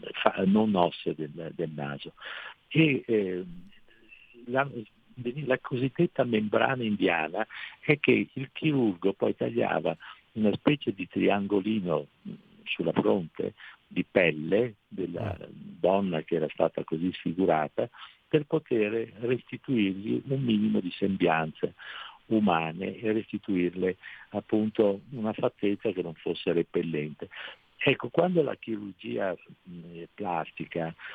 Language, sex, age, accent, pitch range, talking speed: Italian, male, 60-79, native, 95-120 Hz, 105 wpm